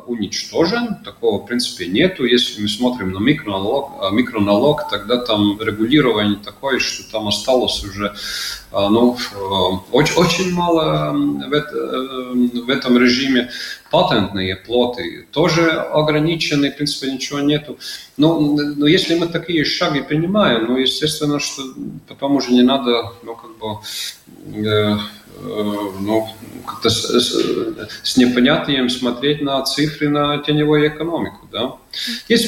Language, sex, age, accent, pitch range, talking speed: Russian, male, 30-49, native, 105-145 Hz, 125 wpm